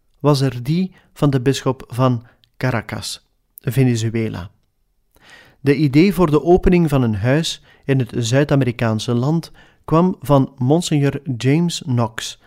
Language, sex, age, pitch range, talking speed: Dutch, male, 40-59, 120-150 Hz, 125 wpm